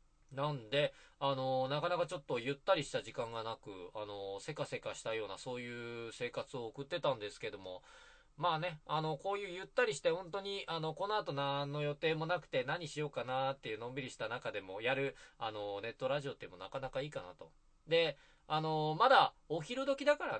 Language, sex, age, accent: Japanese, male, 20-39, native